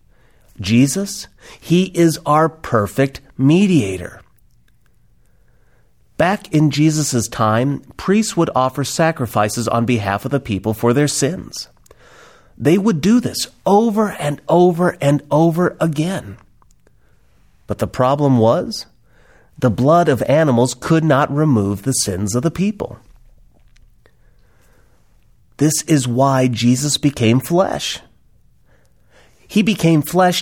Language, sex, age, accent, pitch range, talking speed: English, male, 30-49, American, 115-160 Hz, 110 wpm